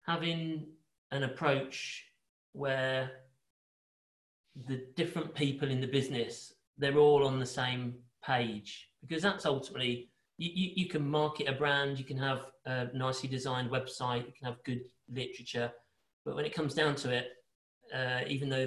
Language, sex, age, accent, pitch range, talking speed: English, male, 40-59, British, 125-140 Hz, 160 wpm